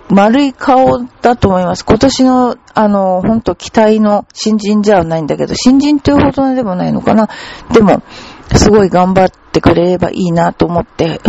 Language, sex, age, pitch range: Japanese, female, 40-59, 180-240 Hz